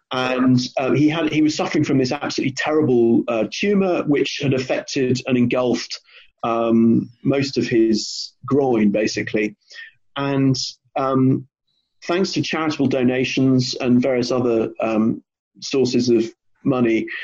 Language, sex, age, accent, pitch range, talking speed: English, male, 30-49, British, 120-140 Hz, 130 wpm